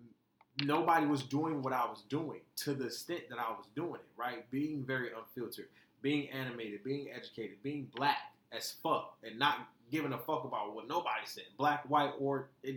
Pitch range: 130-150 Hz